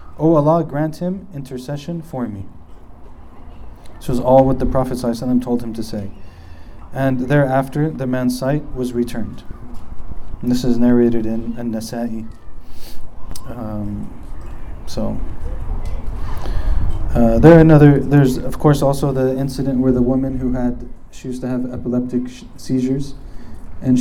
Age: 20-39